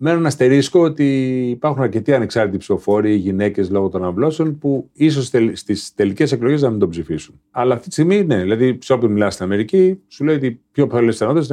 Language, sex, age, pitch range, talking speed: Greek, male, 40-59, 95-140 Hz, 205 wpm